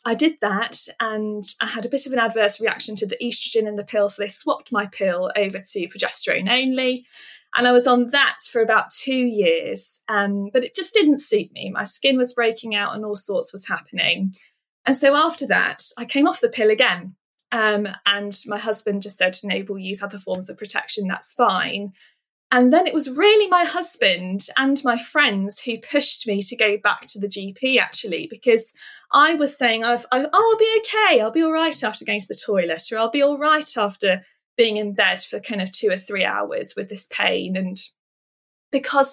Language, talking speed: English, 205 wpm